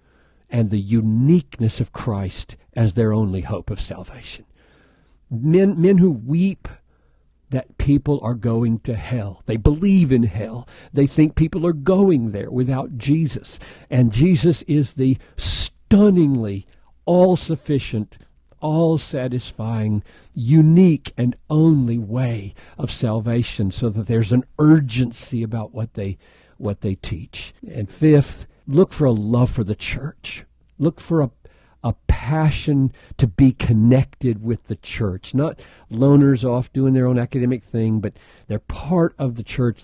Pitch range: 110-145 Hz